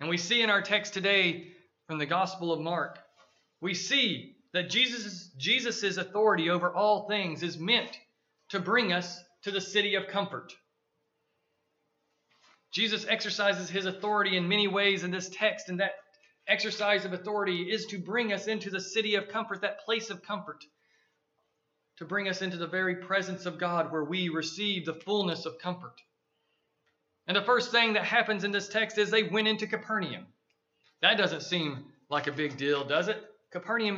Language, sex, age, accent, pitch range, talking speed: English, male, 40-59, American, 175-215 Hz, 175 wpm